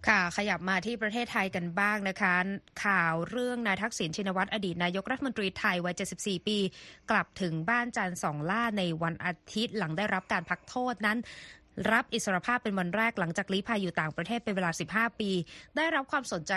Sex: female